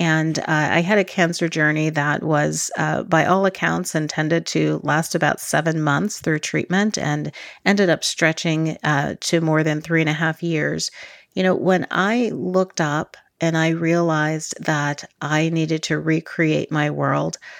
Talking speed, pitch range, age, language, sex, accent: 170 wpm, 155-180 Hz, 40-59, English, female, American